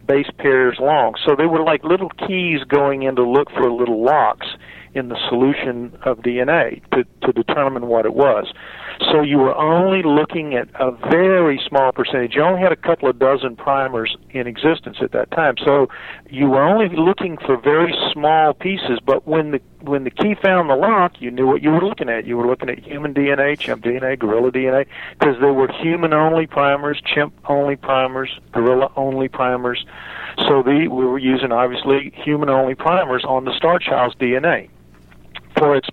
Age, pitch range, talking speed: 50-69, 125-150 Hz, 180 wpm